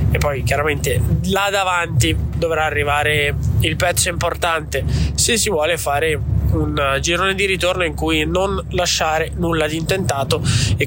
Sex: male